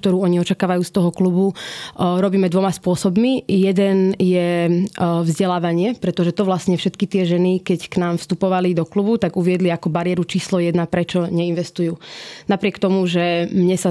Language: Slovak